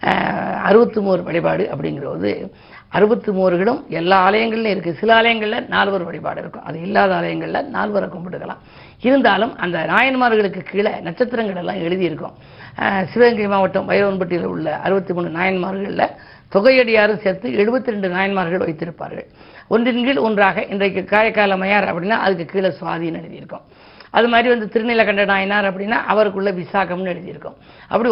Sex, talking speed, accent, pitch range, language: female, 130 wpm, native, 175-215 Hz, Tamil